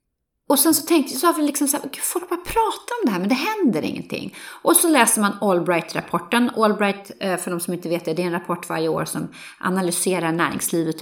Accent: native